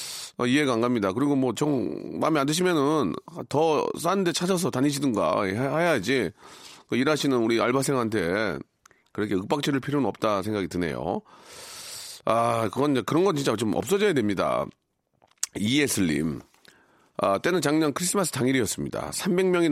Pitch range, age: 125-170 Hz, 40-59